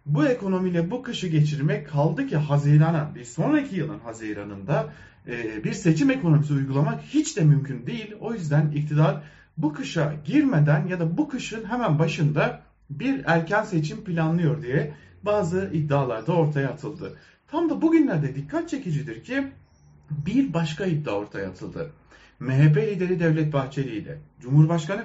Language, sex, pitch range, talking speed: German, male, 140-170 Hz, 140 wpm